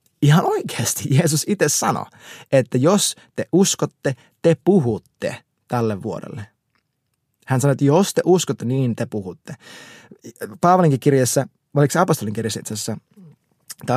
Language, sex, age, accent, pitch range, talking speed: Finnish, male, 20-39, native, 125-175 Hz, 130 wpm